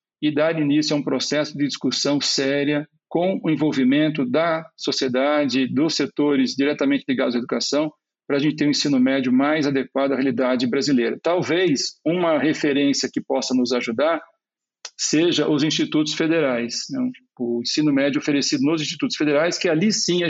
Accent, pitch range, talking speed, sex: Brazilian, 145-195 Hz, 165 wpm, male